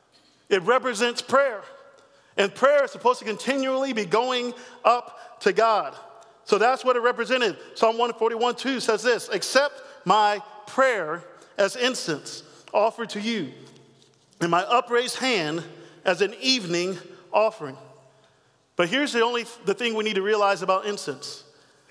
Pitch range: 195-250 Hz